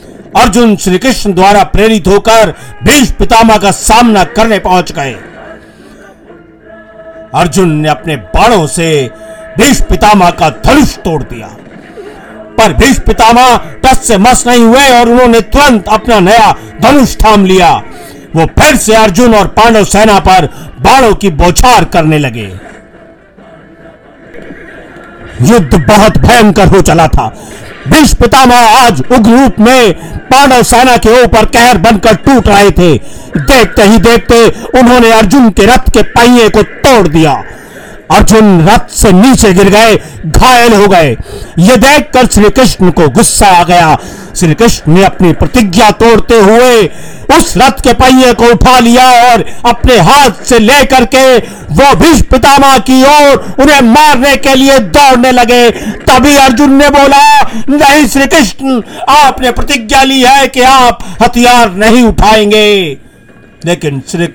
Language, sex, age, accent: Hindi, male, 50-69, native